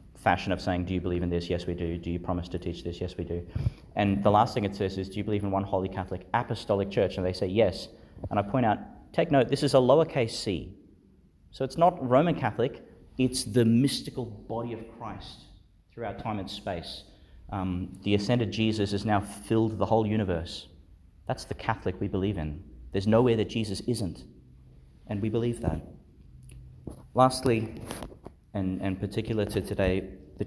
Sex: male